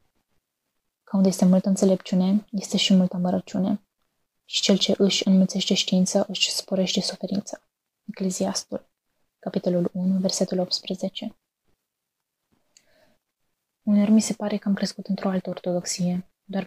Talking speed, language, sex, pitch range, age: 120 wpm, Romanian, female, 180-195 Hz, 20-39